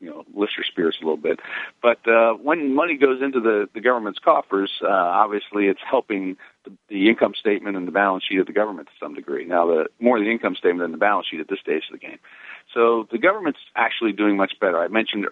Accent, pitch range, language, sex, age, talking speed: American, 95-125 Hz, English, male, 50-69, 235 wpm